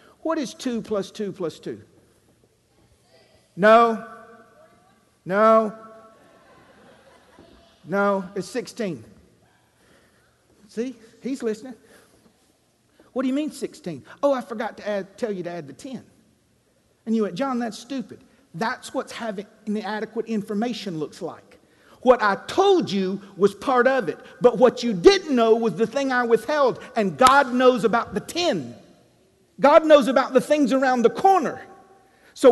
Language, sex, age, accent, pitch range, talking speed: English, male, 50-69, American, 185-250 Hz, 140 wpm